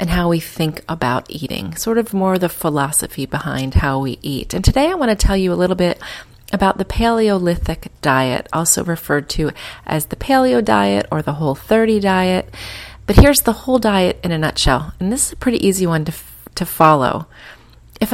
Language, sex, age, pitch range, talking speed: English, female, 30-49, 155-205 Hz, 200 wpm